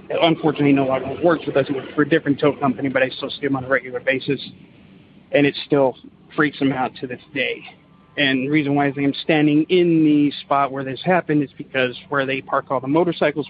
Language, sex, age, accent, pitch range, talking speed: English, male, 40-59, American, 135-155 Hz, 220 wpm